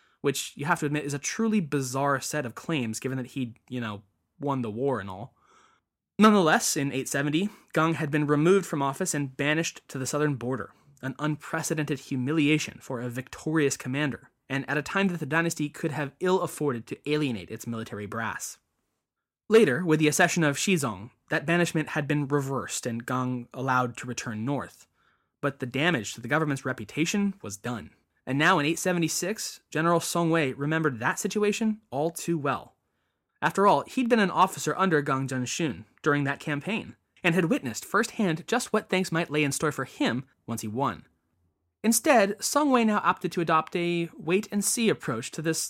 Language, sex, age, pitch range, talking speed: English, male, 20-39, 130-180 Hz, 180 wpm